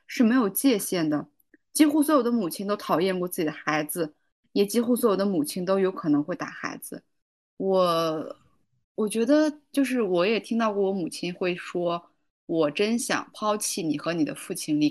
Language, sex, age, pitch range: Chinese, female, 20-39, 160-200 Hz